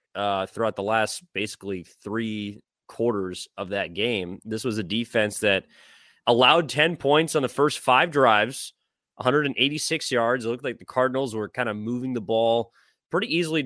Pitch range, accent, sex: 105-130 Hz, American, male